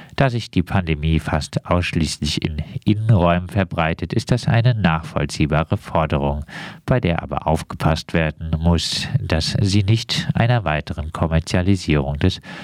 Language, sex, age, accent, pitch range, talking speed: German, male, 50-69, German, 80-100 Hz, 130 wpm